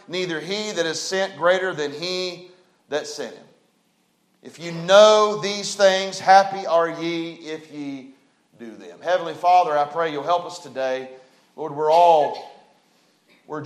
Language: English